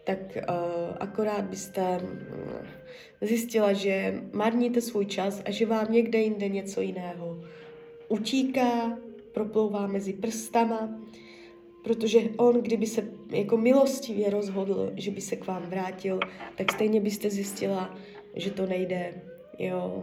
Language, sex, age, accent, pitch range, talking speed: Czech, female, 20-39, native, 190-260 Hz, 125 wpm